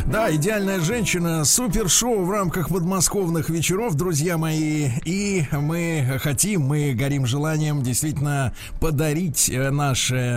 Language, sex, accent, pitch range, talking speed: Russian, male, native, 120-160 Hz, 110 wpm